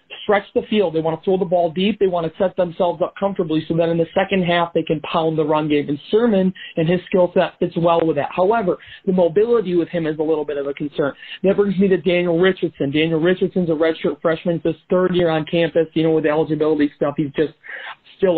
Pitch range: 165-195 Hz